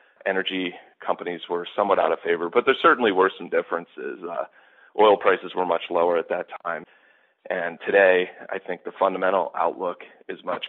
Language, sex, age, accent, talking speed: English, male, 40-59, American, 175 wpm